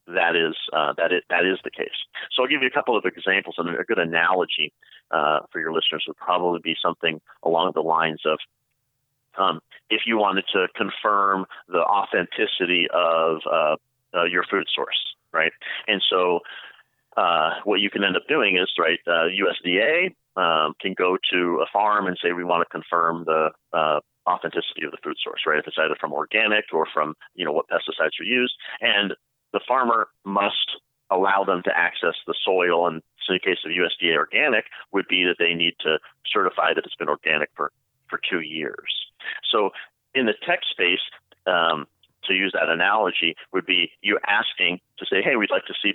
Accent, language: American, English